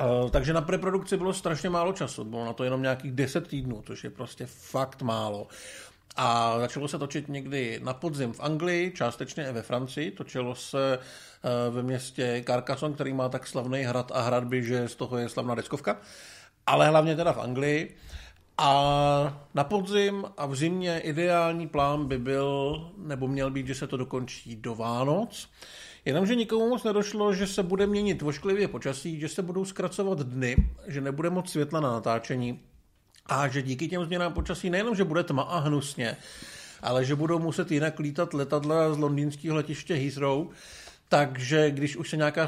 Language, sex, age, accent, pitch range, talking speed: Czech, male, 50-69, native, 130-165 Hz, 175 wpm